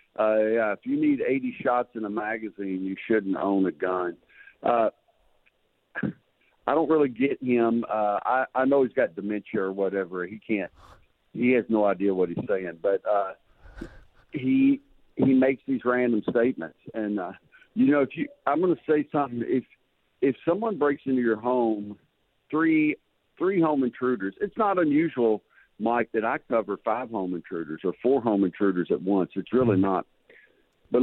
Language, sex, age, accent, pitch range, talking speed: English, male, 50-69, American, 105-155 Hz, 170 wpm